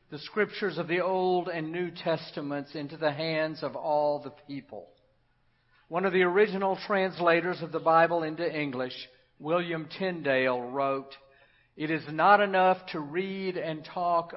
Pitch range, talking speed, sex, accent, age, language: 130-170 Hz, 150 wpm, male, American, 50-69, English